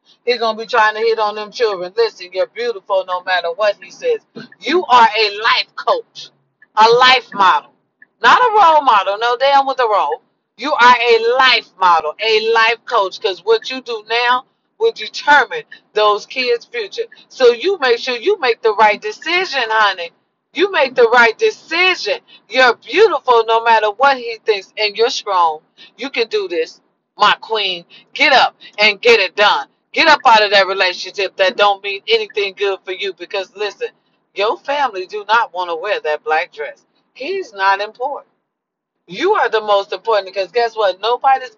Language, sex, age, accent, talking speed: English, female, 40-59, American, 185 wpm